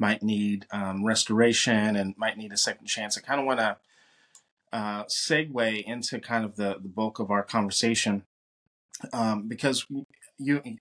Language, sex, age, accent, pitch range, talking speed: English, male, 30-49, American, 100-120 Hz, 155 wpm